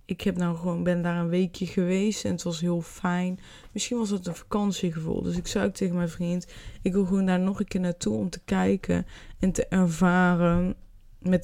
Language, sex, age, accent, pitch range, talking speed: Dutch, female, 20-39, Dutch, 165-180 Hz, 215 wpm